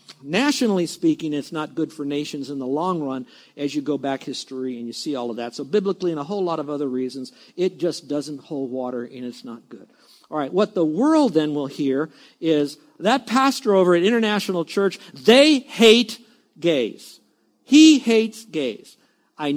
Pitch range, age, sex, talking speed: 145-200 Hz, 50-69, male, 190 wpm